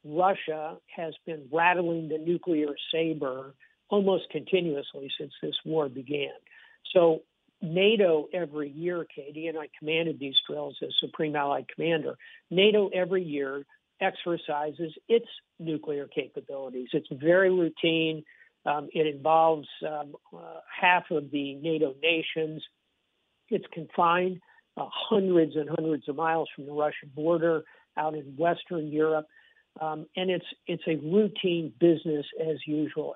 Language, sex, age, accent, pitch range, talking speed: English, male, 60-79, American, 150-180 Hz, 125 wpm